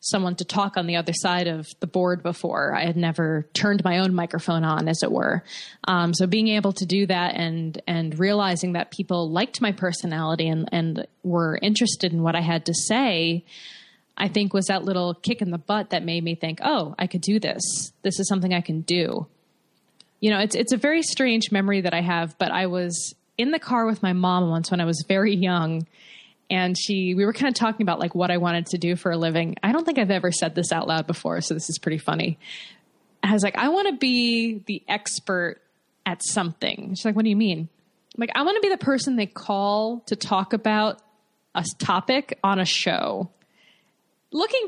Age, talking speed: 20-39, 220 wpm